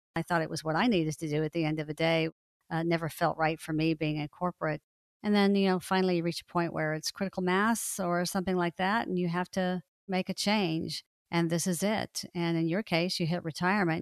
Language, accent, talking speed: English, American, 255 wpm